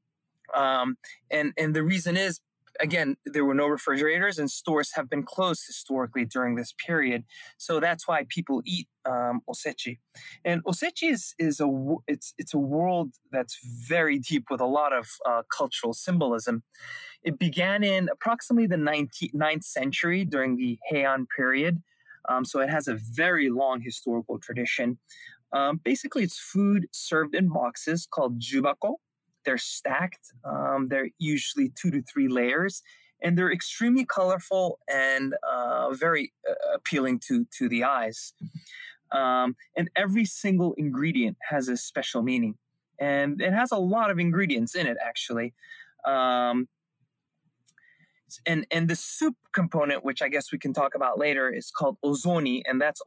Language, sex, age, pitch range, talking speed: English, male, 20-39, 130-185 Hz, 155 wpm